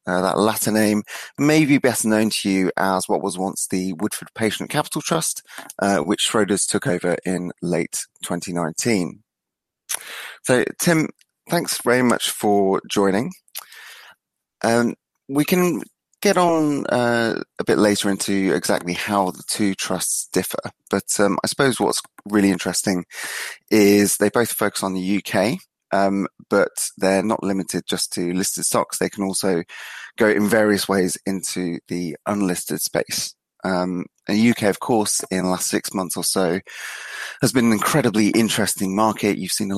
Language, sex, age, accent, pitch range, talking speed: English, male, 30-49, British, 90-110 Hz, 160 wpm